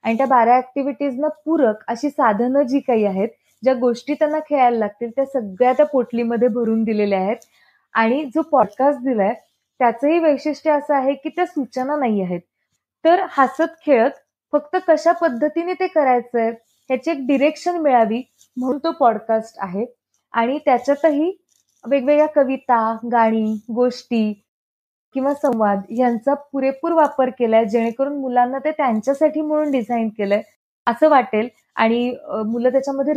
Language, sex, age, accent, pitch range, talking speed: Marathi, female, 20-39, native, 230-290 Hz, 135 wpm